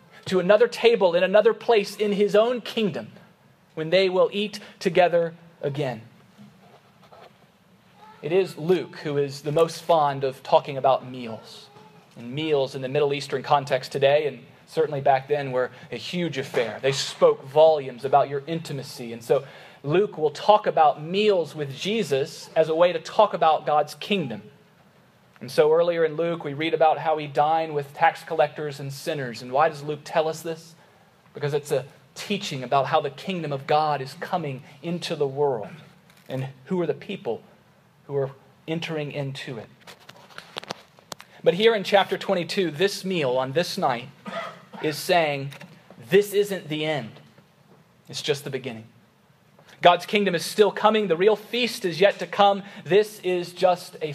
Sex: male